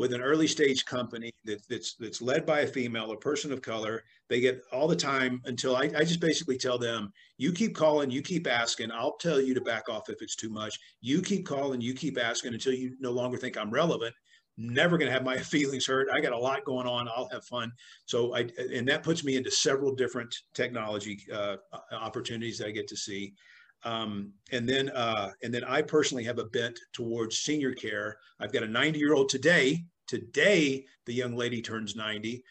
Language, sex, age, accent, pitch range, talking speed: English, male, 50-69, American, 115-140 Hz, 215 wpm